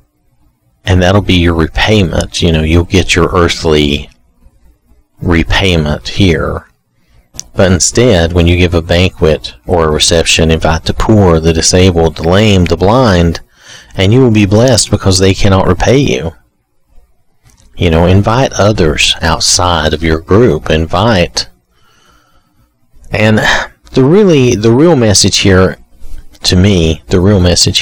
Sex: male